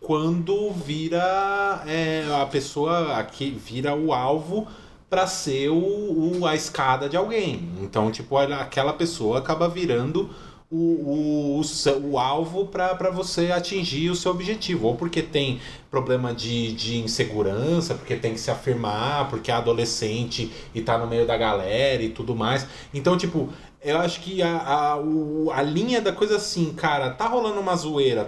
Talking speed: 160 wpm